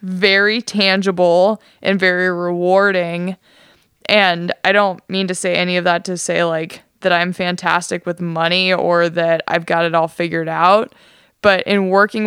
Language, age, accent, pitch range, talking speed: English, 20-39, American, 170-190 Hz, 160 wpm